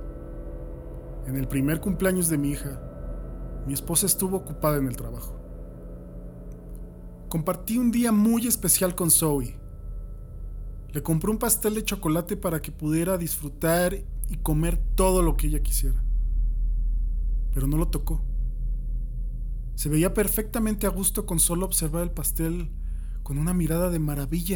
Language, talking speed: Spanish, 140 wpm